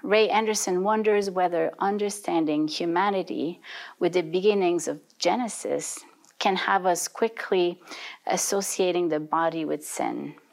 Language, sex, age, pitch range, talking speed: English, female, 40-59, 170-210 Hz, 115 wpm